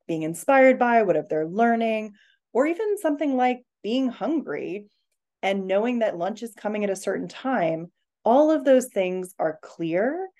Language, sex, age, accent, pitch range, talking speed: English, female, 20-39, American, 170-255 Hz, 165 wpm